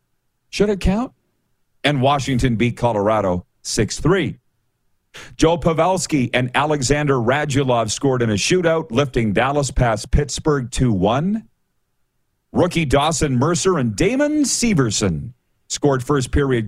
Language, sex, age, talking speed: English, male, 40-59, 110 wpm